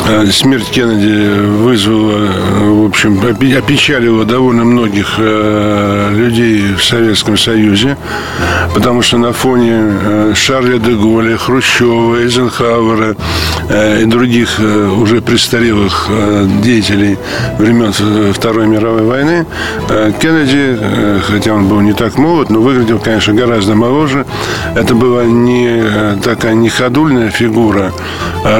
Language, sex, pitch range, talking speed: Russian, male, 105-120 Hz, 105 wpm